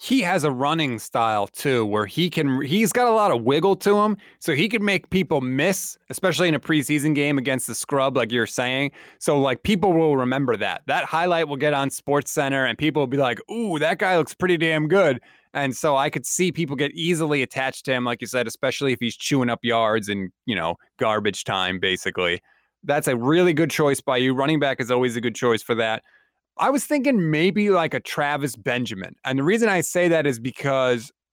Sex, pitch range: male, 130-185 Hz